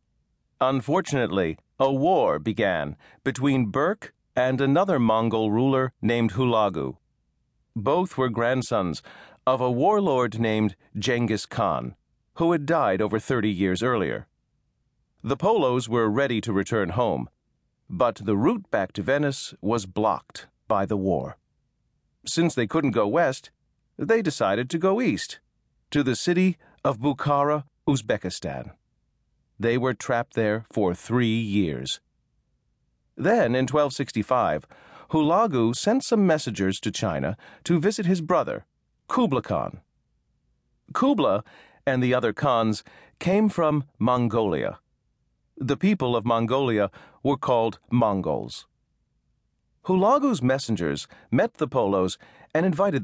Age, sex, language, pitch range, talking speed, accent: 40-59, male, English, 110-145 Hz, 120 wpm, American